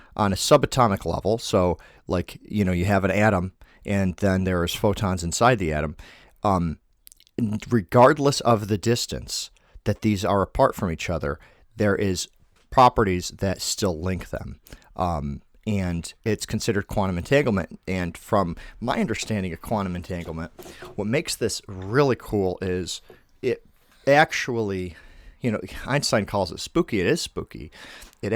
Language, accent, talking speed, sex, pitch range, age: English, American, 145 wpm, male, 90-115 Hz, 40-59